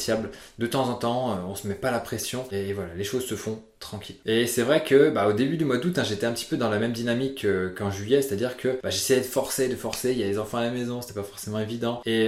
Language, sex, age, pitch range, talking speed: French, male, 20-39, 105-130 Hz, 300 wpm